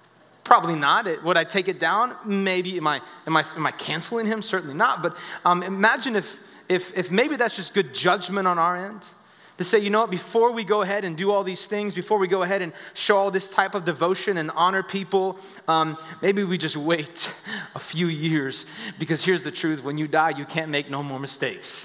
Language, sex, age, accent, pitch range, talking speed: English, male, 30-49, American, 135-185 Hz, 220 wpm